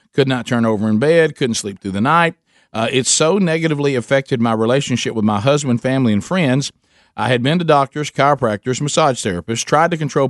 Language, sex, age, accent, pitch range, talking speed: English, male, 50-69, American, 115-150 Hz, 205 wpm